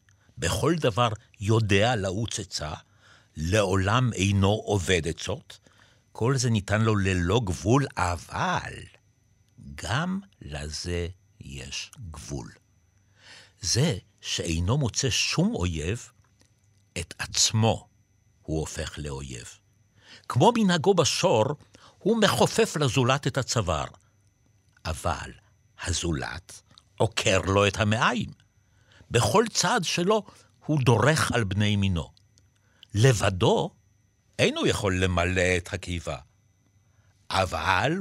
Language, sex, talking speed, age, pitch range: Hebrew, male, 95 wpm, 60-79, 95-115 Hz